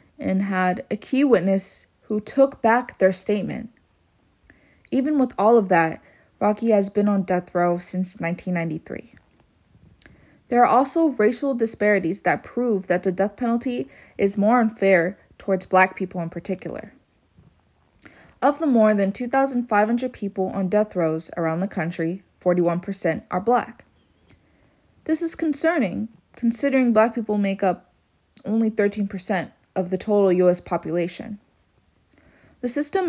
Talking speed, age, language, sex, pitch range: 135 wpm, 20-39, English, female, 190-250 Hz